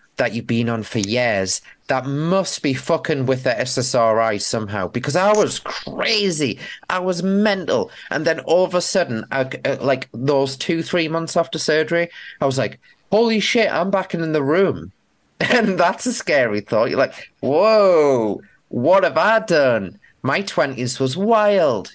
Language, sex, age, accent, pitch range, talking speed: English, male, 30-49, British, 105-170 Hz, 165 wpm